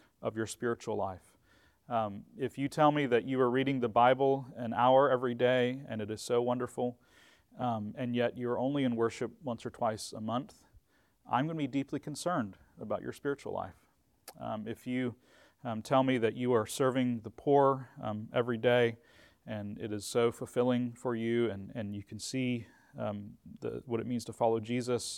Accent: American